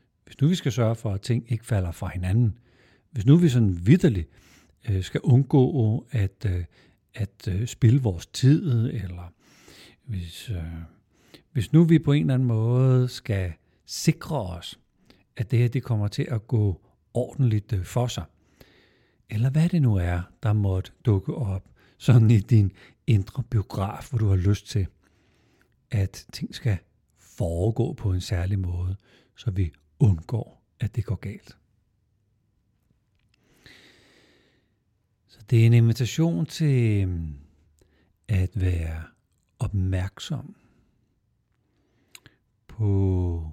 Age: 60-79